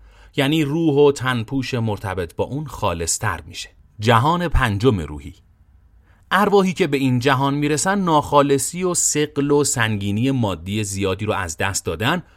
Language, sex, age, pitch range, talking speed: Persian, male, 30-49, 95-135 Hz, 140 wpm